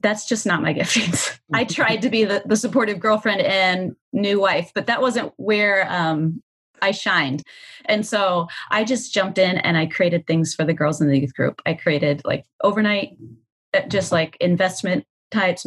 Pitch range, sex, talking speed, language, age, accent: 175-210 Hz, female, 185 wpm, English, 30-49, American